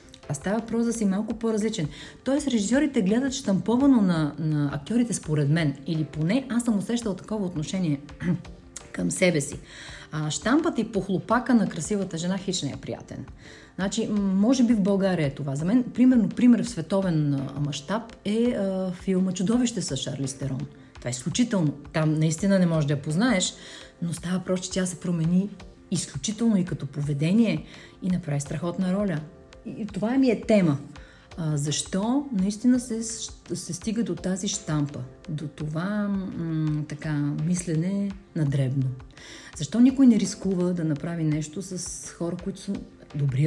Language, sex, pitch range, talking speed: Bulgarian, female, 150-215 Hz, 160 wpm